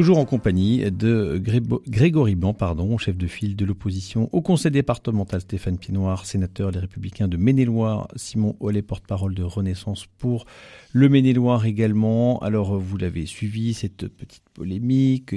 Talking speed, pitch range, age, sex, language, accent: 160 wpm, 100-130 Hz, 50-69, male, French, French